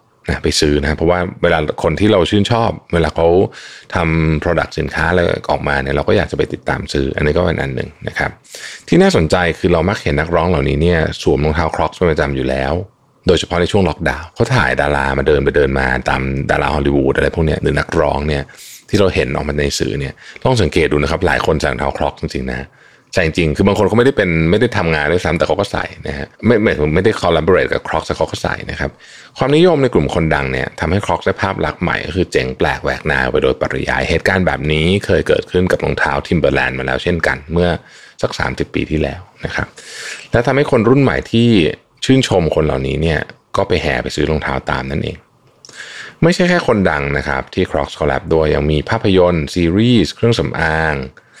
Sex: male